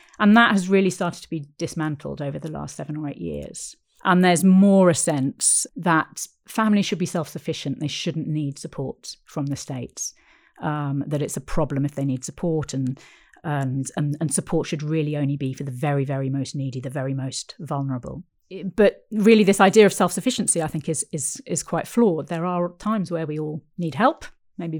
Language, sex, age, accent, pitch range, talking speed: English, female, 40-59, British, 145-180 Hz, 200 wpm